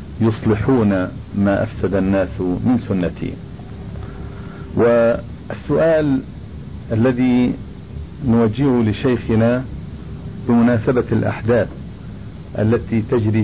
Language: Arabic